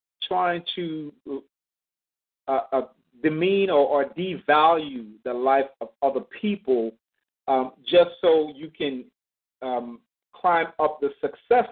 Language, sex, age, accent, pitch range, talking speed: English, male, 40-59, American, 140-190 Hz, 120 wpm